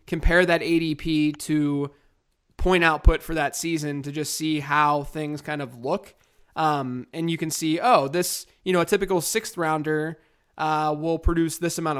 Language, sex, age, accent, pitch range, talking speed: English, male, 20-39, American, 140-160 Hz, 175 wpm